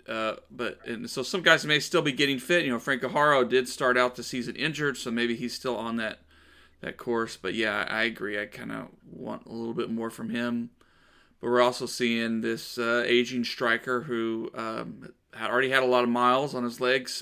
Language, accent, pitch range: English, American, 120-150 Hz